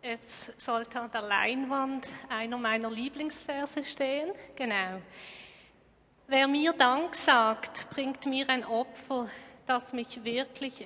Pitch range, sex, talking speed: 230-270 Hz, female, 115 wpm